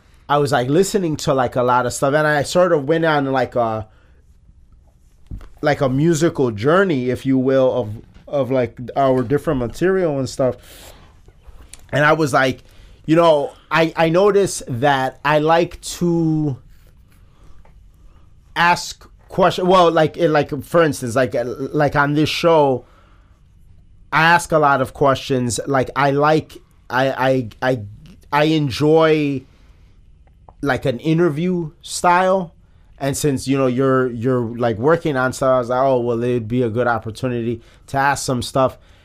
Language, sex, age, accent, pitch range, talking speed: English, male, 30-49, American, 115-150 Hz, 150 wpm